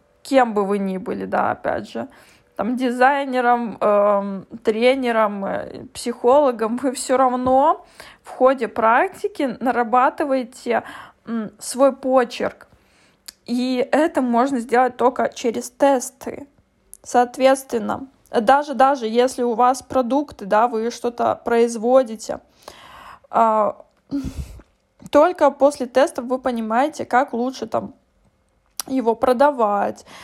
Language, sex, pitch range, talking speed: Russian, female, 235-270 Hz, 105 wpm